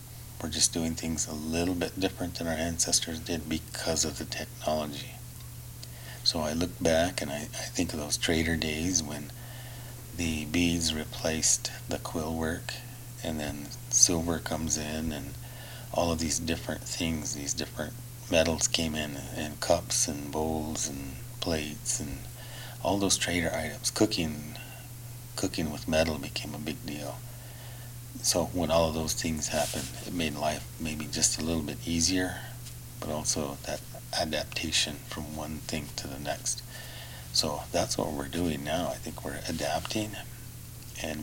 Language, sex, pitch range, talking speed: English, male, 80-120 Hz, 155 wpm